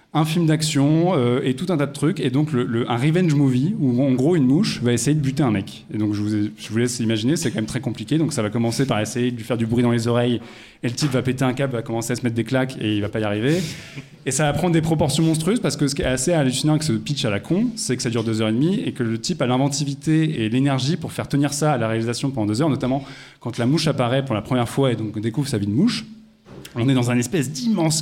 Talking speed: 310 wpm